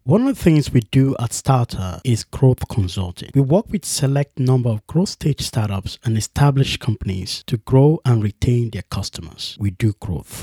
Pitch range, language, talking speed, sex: 110-150 Hz, English, 185 wpm, male